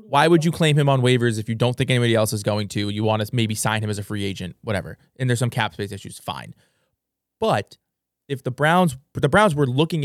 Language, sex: English, male